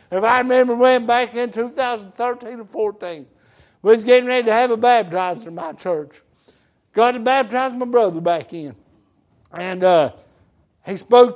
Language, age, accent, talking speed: English, 60-79, American, 165 wpm